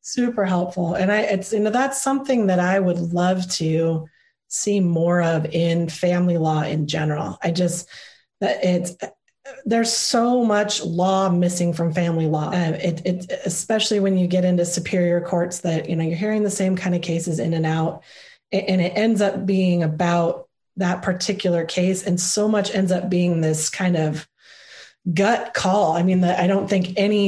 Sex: female